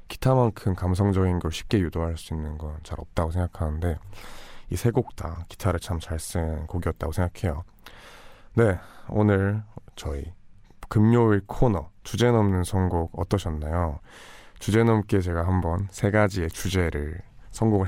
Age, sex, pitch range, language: 20-39, male, 85-110 Hz, Korean